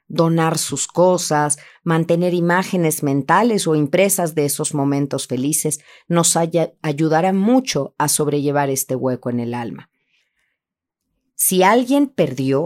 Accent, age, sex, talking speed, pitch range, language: Mexican, 40-59, female, 120 wpm, 145-190 Hz, Spanish